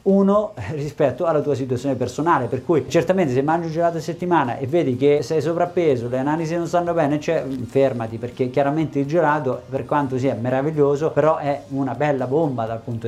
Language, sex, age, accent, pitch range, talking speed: Italian, male, 30-49, native, 130-170 Hz, 195 wpm